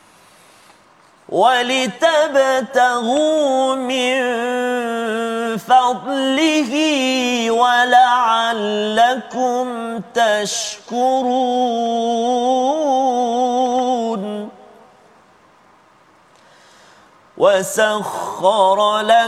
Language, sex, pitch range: Malayalam, male, 225-255 Hz